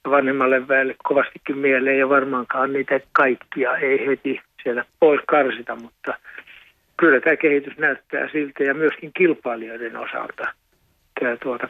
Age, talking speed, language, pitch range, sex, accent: 60-79, 130 wpm, Finnish, 125-145 Hz, male, native